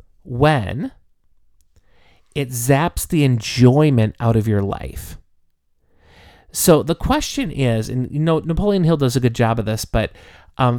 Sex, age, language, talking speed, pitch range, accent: male, 30-49, English, 145 wpm, 110-155 Hz, American